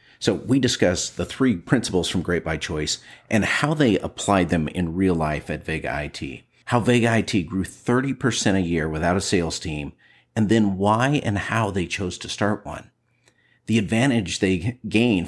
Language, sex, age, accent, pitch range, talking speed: English, male, 50-69, American, 85-115 Hz, 180 wpm